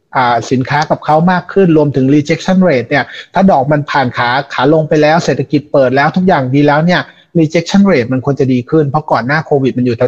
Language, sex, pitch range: Thai, male, 130-160 Hz